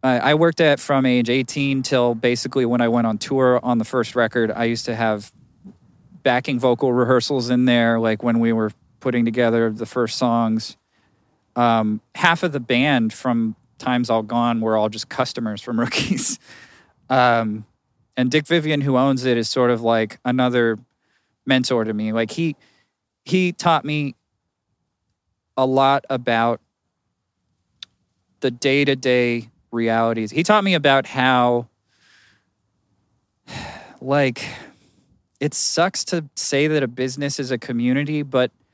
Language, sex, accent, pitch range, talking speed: English, male, American, 115-135 Hz, 150 wpm